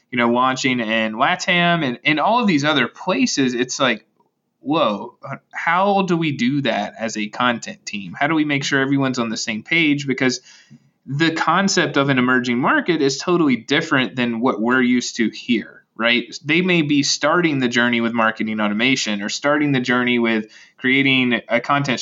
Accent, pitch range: American, 115-145 Hz